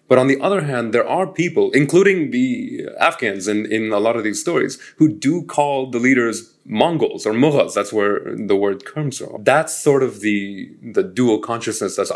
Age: 30-49